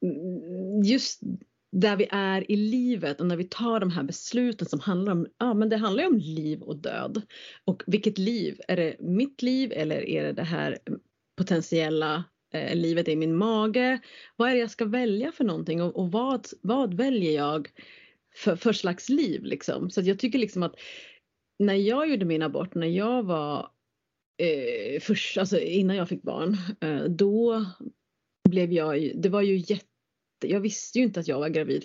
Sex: female